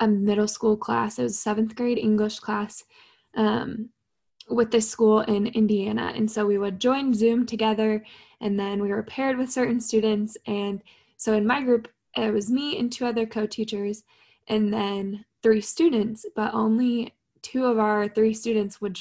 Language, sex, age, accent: English, female, 10-29, American